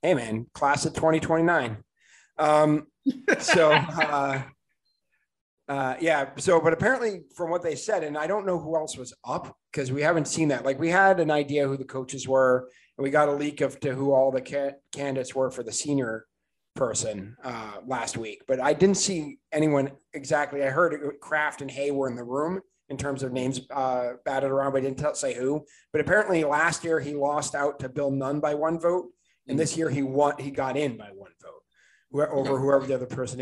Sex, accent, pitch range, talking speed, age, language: male, American, 135-160 Hz, 210 wpm, 30-49, English